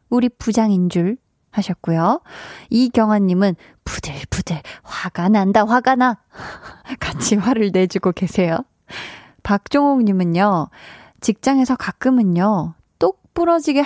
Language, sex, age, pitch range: Korean, female, 20-39, 185-255 Hz